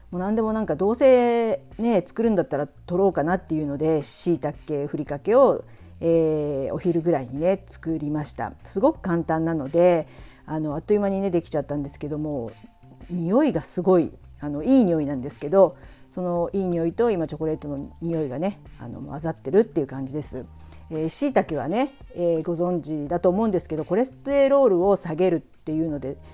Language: Japanese